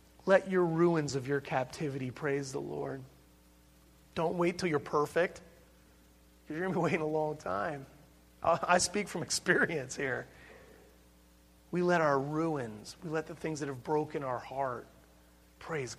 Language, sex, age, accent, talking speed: English, male, 40-59, American, 160 wpm